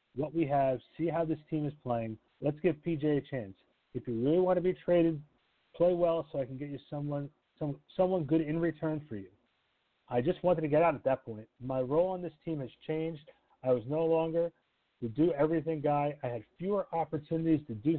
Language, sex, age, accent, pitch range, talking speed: English, male, 40-59, American, 130-160 Hz, 215 wpm